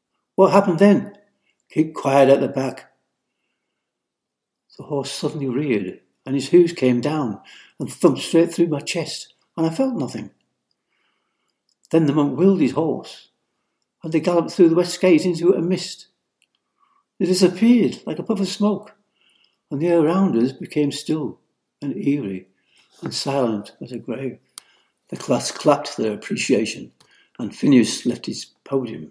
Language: English